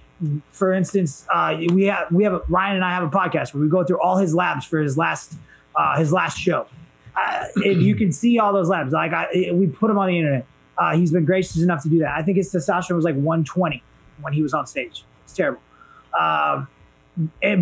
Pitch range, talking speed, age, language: 160-195 Hz, 230 wpm, 20-39, English